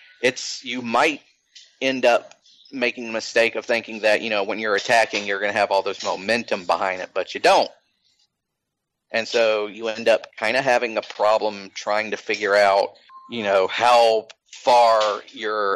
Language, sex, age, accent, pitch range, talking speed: English, male, 40-59, American, 105-135 Hz, 180 wpm